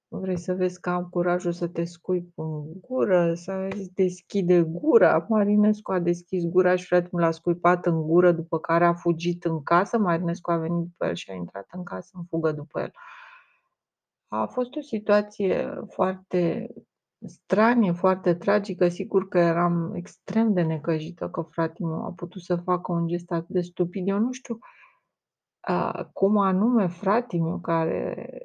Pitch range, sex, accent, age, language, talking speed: 170-190 Hz, female, native, 30-49, Romanian, 165 wpm